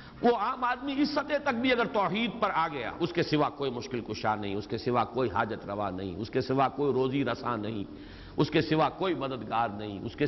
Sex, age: male, 50-69